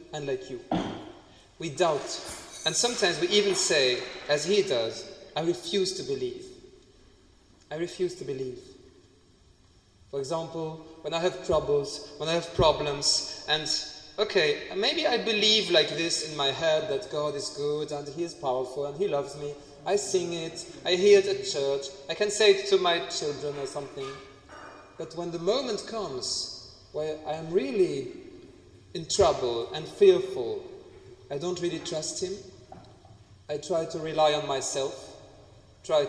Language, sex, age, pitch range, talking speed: English, male, 40-59, 145-210 Hz, 160 wpm